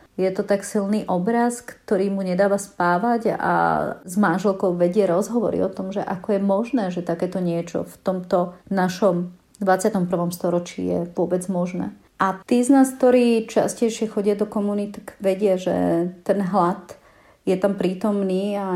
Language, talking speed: Slovak, 155 wpm